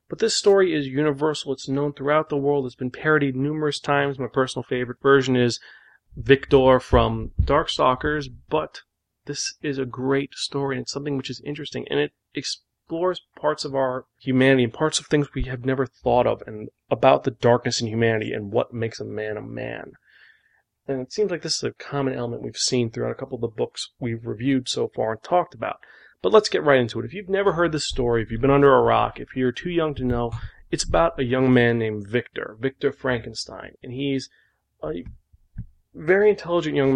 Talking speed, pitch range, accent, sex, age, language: 205 wpm, 120-150 Hz, American, male, 30-49, English